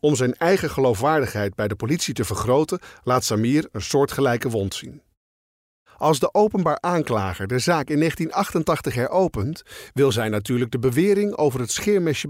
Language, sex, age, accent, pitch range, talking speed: Dutch, male, 50-69, Dutch, 105-155 Hz, 155 wpm